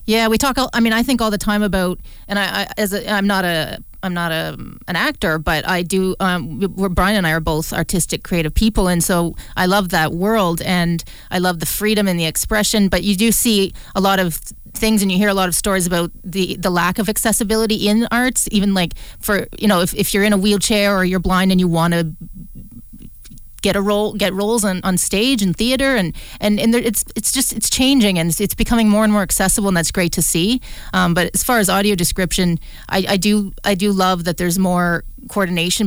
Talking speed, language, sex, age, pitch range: 235 wpm, English, female, 30-49, 180-210 Hz